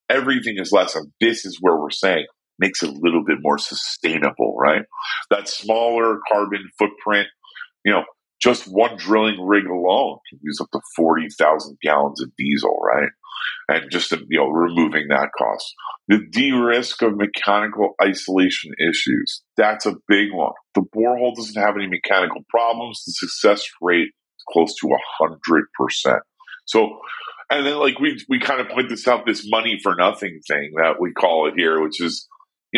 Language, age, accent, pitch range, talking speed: English, 40-59, American, 90-145 Hz, 170 wpm